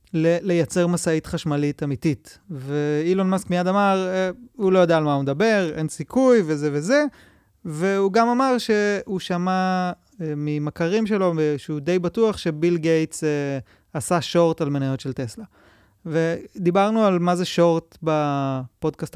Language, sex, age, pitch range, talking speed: Hebrew, male, 30-49, 150-185 Hz, 135 wpm